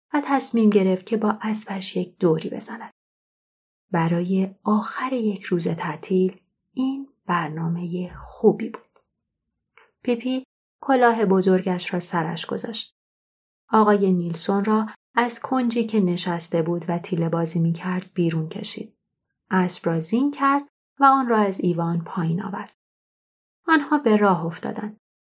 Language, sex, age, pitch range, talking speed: Persian, female, 30-49, 175-230 Hz, 130 wpm